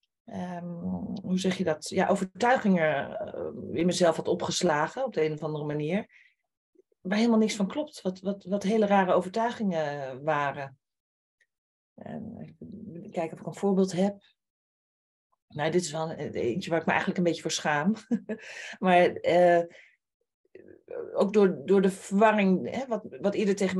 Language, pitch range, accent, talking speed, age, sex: Dutch, 170-210 Hz, Dutch, 155 wpm, 40-59, female